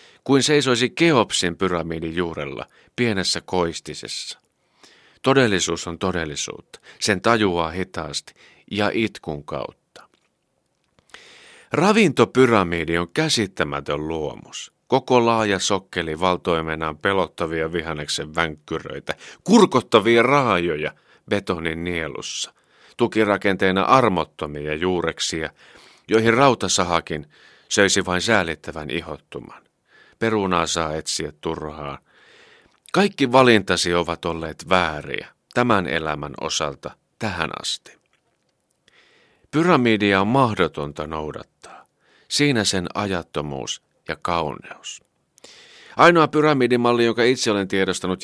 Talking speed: 85 wpm